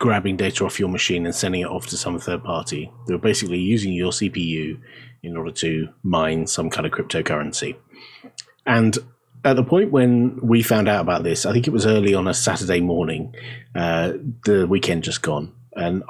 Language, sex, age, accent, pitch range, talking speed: English, male, 30-49, British, 90-120 Hz, 195 wpm